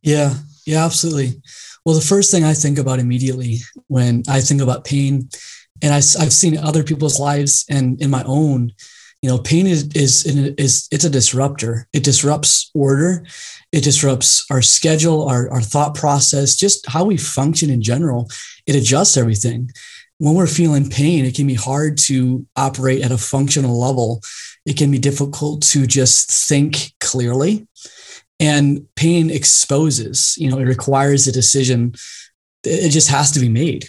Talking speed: 165 wpm